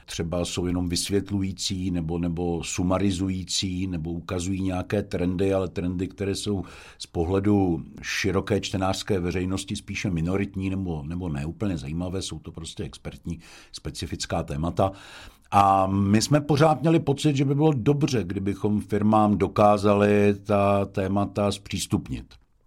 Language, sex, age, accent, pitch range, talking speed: Czech, male, 60-79, native, 90-105 Hz, 130 wpm